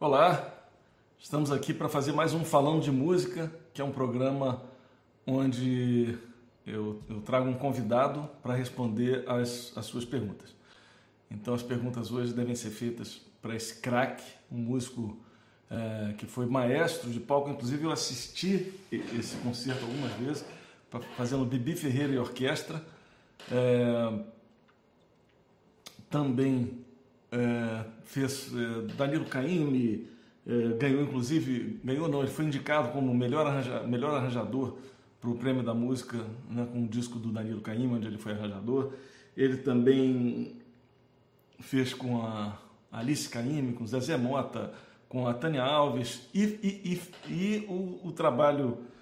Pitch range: 120-140 Hz